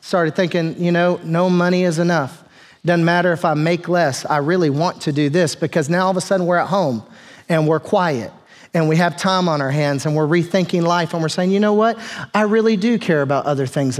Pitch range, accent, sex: 165-210 Hz, American, male